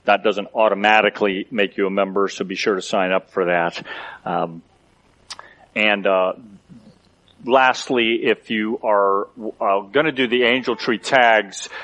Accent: American